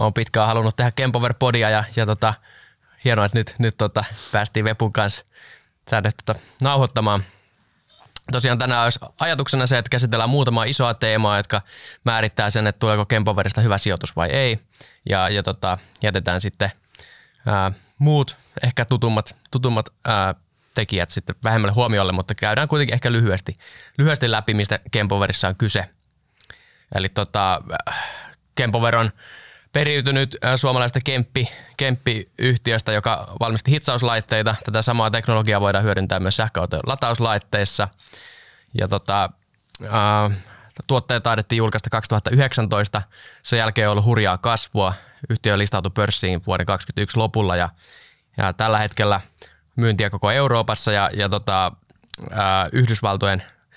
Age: 20-39